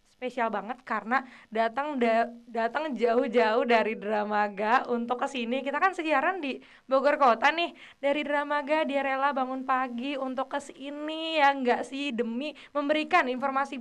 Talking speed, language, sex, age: 145 wpm, Indonesian, female, 20-39